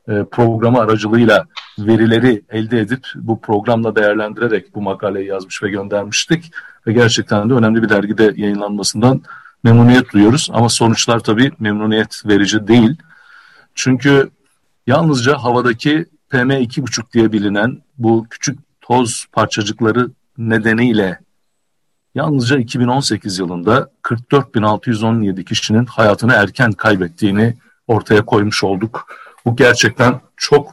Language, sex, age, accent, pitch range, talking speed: Turkish, male, 50-69, native, 110-130 Hz, 105 wpm